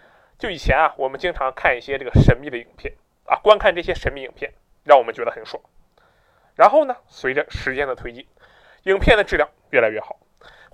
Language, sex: Chinese, male